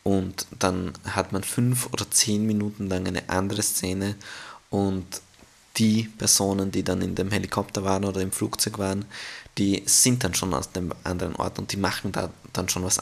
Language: German